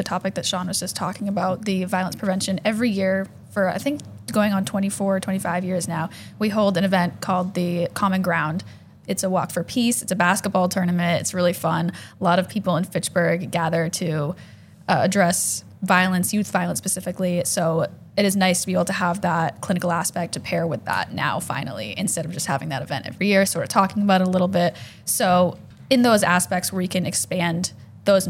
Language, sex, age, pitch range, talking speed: English, female, 10-29, 175-195 Hz, 210 wpm